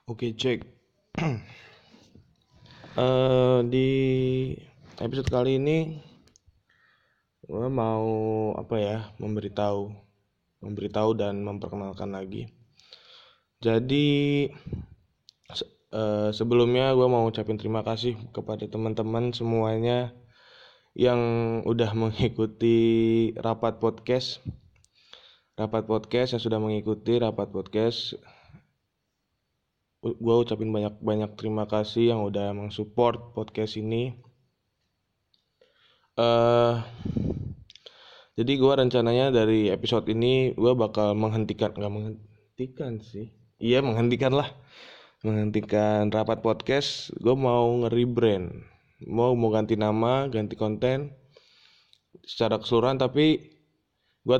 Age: 20-39